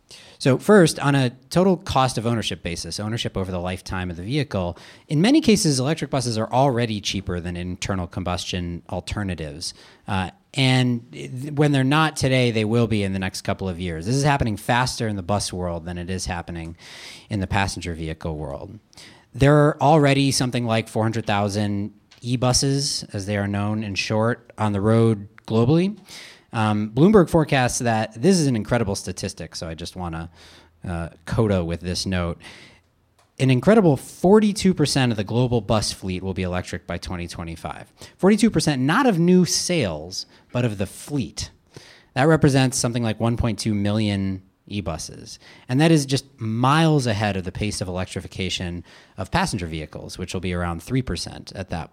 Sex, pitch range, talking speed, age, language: male, 95-130 Hz, 165 wpm, 30-49, English